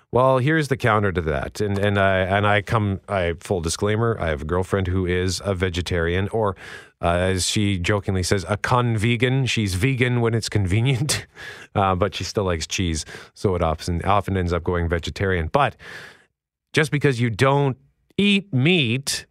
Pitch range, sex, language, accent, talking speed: 95-125 Hz, male, English, American, 175 wpm